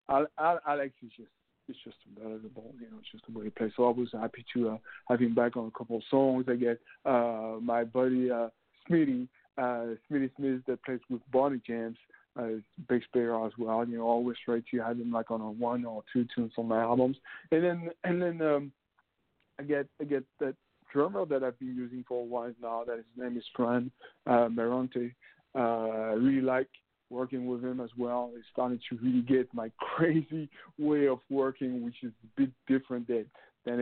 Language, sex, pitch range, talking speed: English, male, 115-130 Hz, 215 wpm